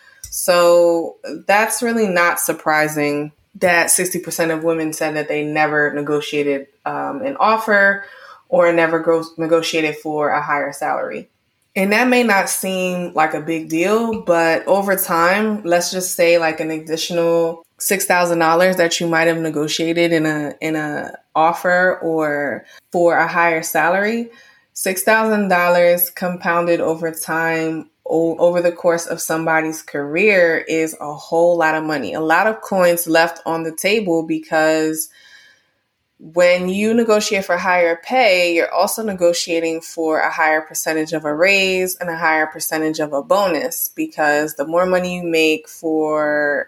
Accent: American